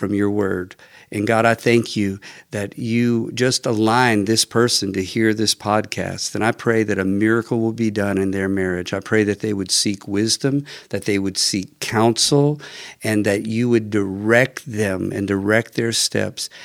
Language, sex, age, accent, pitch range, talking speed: English, male, 50-69, American, 100-115 Hz, 185 wpm